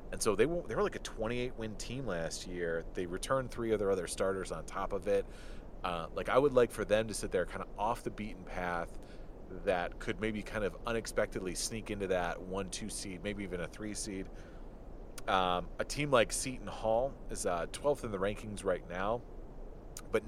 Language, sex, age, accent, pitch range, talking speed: English, male, 30-49, American, 90-110 Hz, 205 wpm